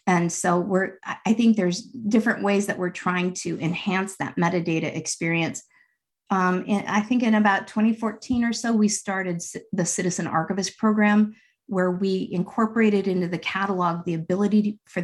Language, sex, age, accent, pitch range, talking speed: English, female, 50-69, American, 165-205 Hz, 155 wpm